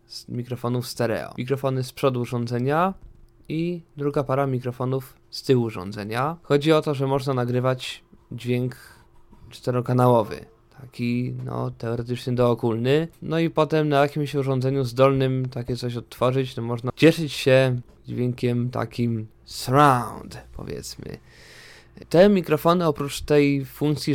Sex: male